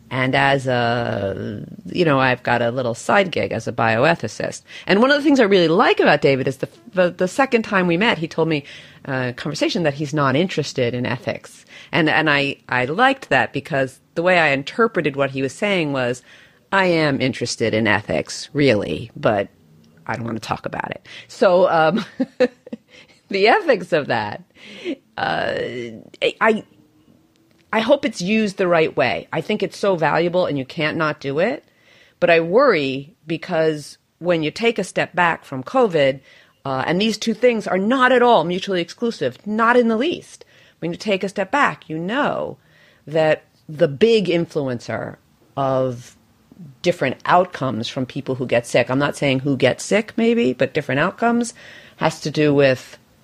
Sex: female